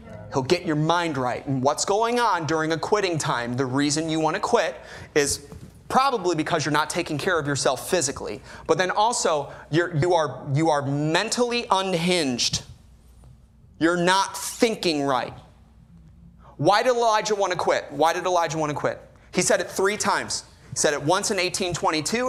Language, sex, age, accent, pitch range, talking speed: English, male, 30-49, American, 145-205 Hz, 180 wpm